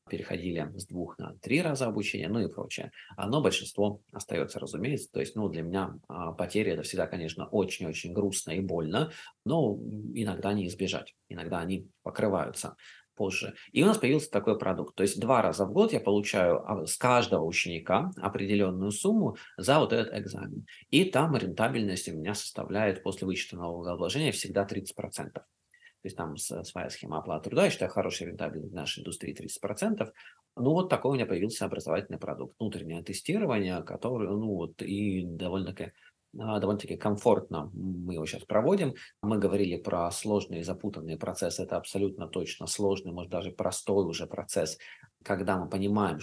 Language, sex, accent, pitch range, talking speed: Russian, male, native, 90-105 Hz, 160 wpm